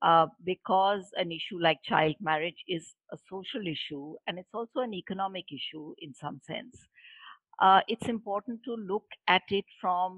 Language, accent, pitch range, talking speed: English, Indian, 170-230 Hz, 165 wpm